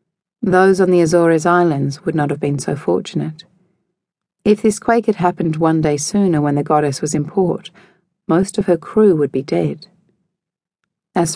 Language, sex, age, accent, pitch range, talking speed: English, female, 40-59, Australian, 155-185 Hz, 175 wpm